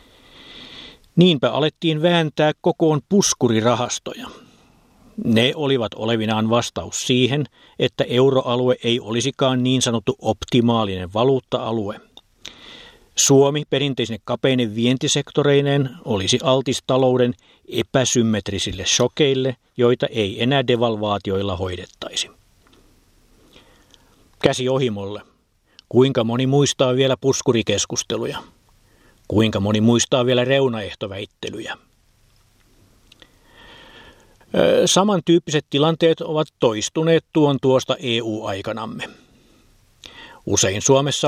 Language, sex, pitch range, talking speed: Finnish, male, 110-135 Hz, 75 wpm